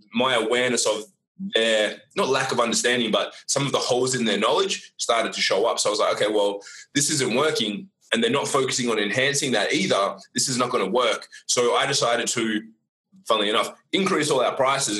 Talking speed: 210 wpm